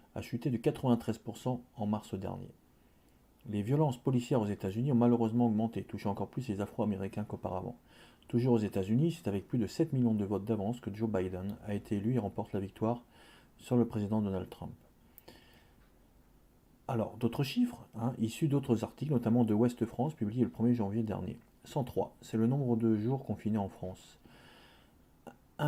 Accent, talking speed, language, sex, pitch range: French, 175 wpm, French, male, 105-120 Hz